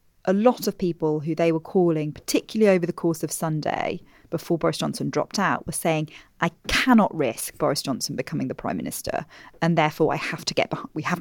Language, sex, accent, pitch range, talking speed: English, female, British, 160-195 Hz, 210 wpm